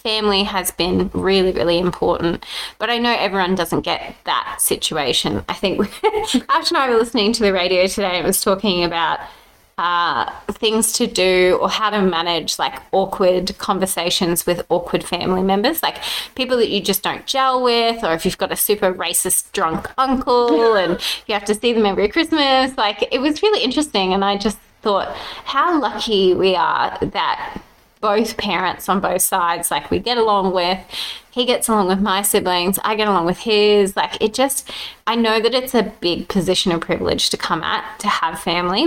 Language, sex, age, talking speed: English, female, 20-39, 185 wpm